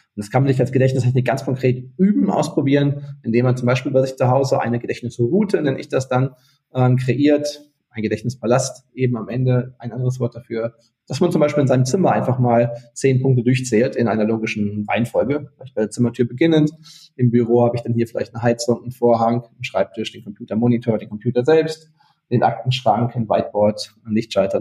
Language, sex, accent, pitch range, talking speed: German, male, German, 115-135 Hz, 195 wpm